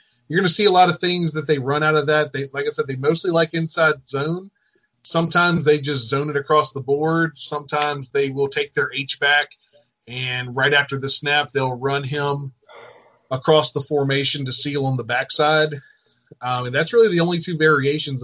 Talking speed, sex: 200 wpm, male